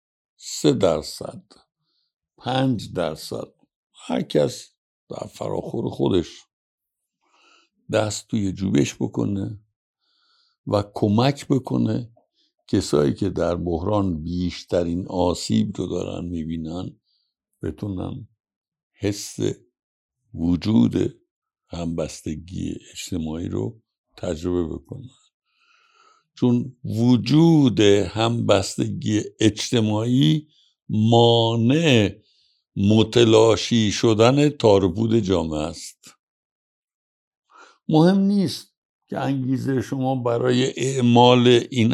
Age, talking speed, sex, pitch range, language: 60-79, 75 wpm, male, 95-125 Hz, Persian